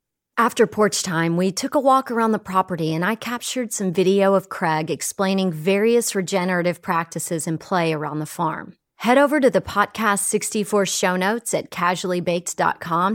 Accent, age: American, 30-49